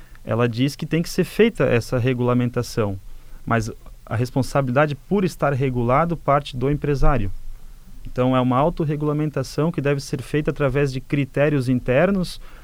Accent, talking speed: Brazilian, 140 wpm